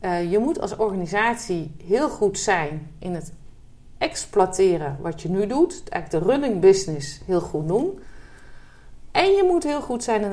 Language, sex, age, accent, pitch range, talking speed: Dutch, female, 40-59, Dutch, 170-220 Hz, 170 wpm